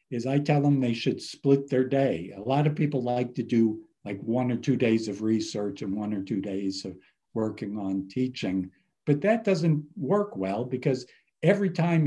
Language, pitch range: English, 115-155 Hz